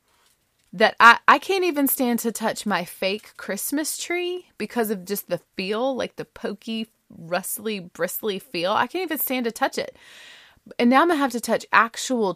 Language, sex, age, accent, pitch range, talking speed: English, female, 20-39, American, 175-235 Hz, 185 wpm